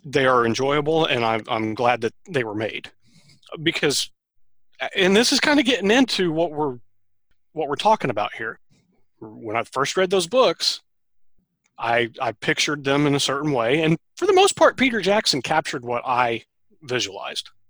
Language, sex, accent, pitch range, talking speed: English, male, American, 120-160 Hz, 175 wpm